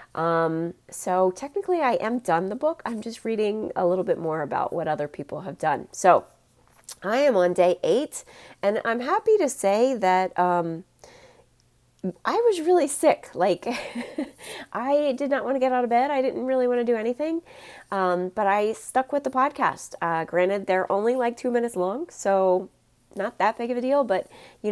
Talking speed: 190 wpm